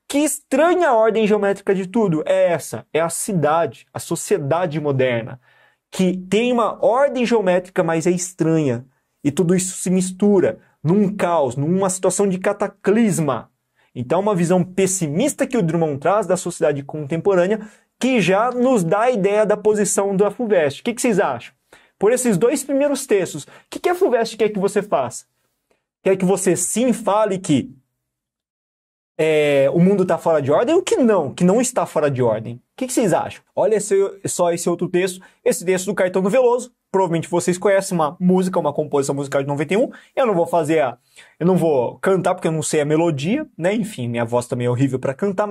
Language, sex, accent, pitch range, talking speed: Portuguese, male, Brazilian, 160-215 Hz, 190 wpm